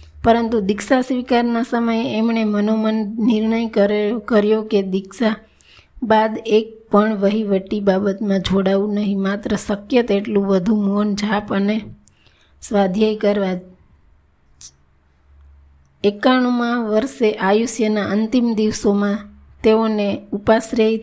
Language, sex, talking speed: Gujarati, female, 85 wpm